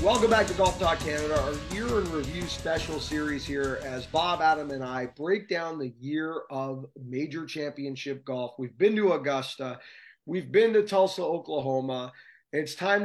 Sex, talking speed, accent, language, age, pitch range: male, 170 wpm, American, English, 30-49, 135-195 Hz